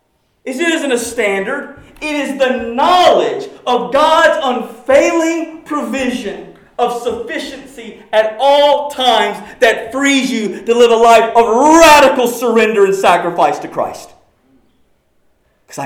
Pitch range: 205-295 Hz